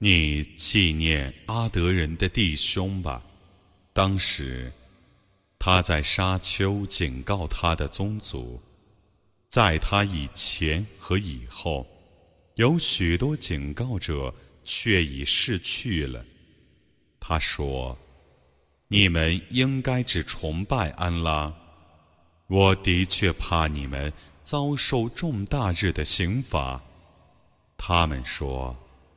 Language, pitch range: Arabic, 75-105 Hz